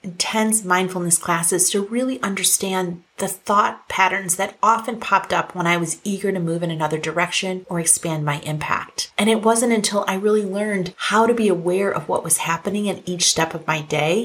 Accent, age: American, 30-49